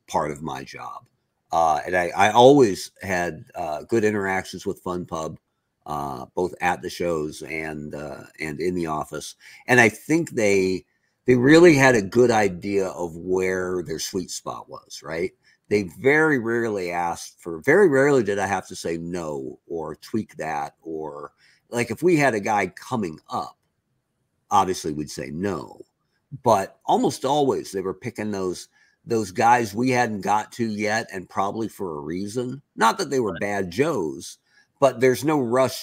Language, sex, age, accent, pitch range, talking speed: English, male, 50-69, American, 90-125 Hz, 170 wpm